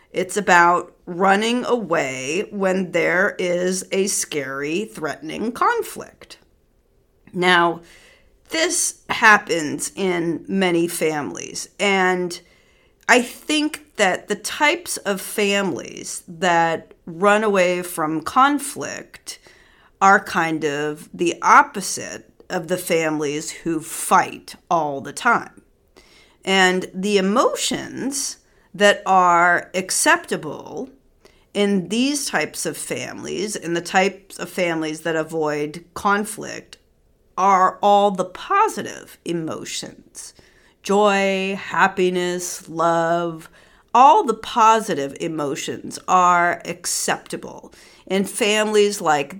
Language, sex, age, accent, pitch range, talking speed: English, female, 40-59, American, 170-215 Hz, 95 wpm